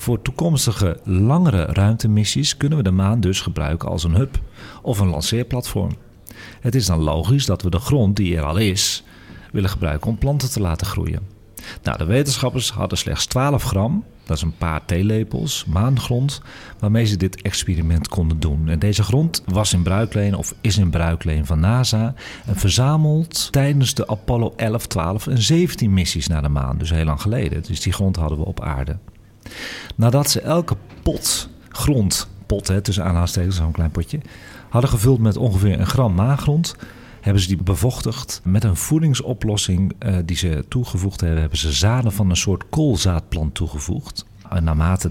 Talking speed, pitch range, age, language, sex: 170 wpm, 90-120 Hz, 40-59, Dutch, male